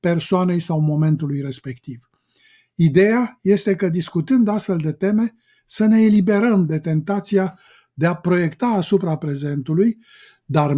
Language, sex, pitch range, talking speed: Romanian, male, 160-210 Hz, 120 wpm